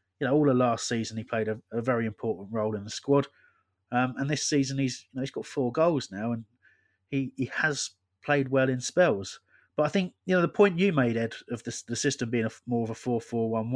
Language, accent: English, British